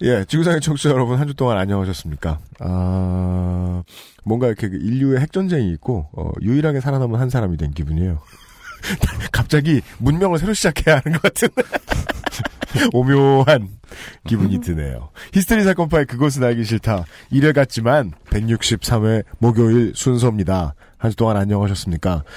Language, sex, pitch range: Korean, male, 95-140 Hz